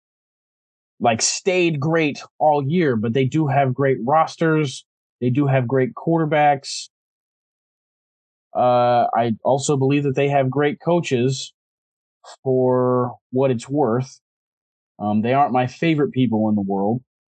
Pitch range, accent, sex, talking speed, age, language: 115-140 Hz, American, male, 130 wpm, 20-39, English